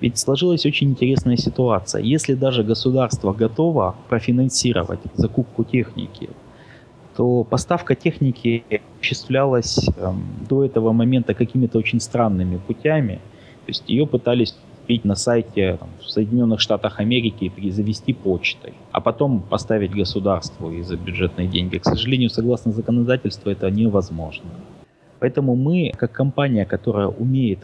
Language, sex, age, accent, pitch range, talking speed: Russian, male, 20-39, native, 100-125 Hz, 120 wpm